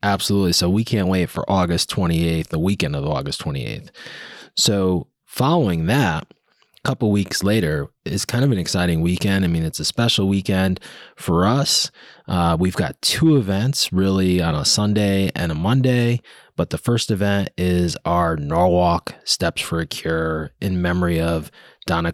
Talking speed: 170 wpm